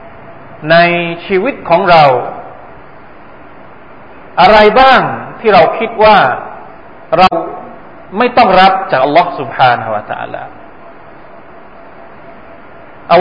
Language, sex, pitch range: Thai, male, 145-215 Hz